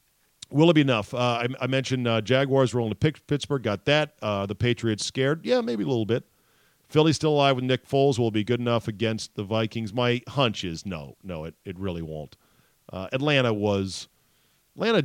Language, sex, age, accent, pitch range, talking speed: English, male, 40-59, American, 100-125 Hz, 205 wpm